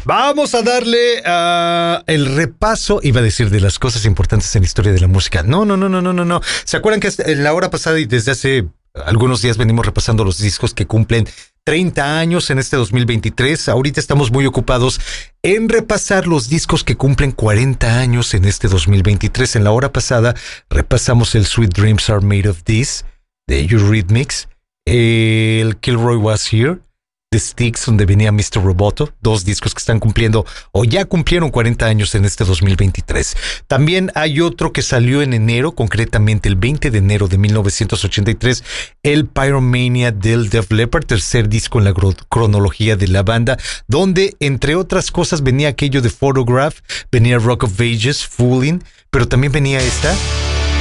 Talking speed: 170 wpm